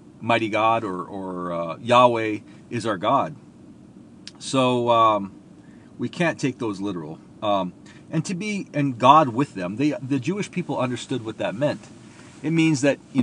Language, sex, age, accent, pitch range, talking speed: English, male, 40-59, American, 115-155 Hz, 160 wpm